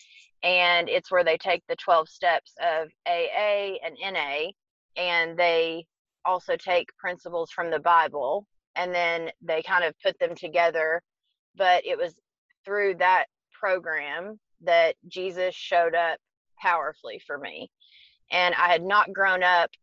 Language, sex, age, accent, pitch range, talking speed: English, female, 30-49, American, 165-190 Hz, 140 wpm